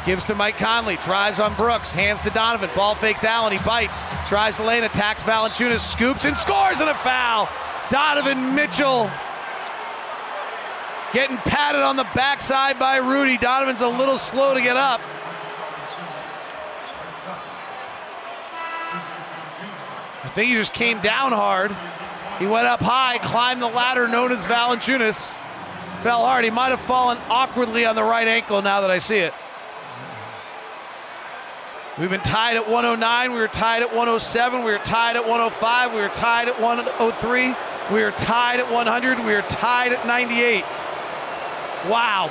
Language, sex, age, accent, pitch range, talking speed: English, male, 40-59, American, 220-255 Hz, 150 wpm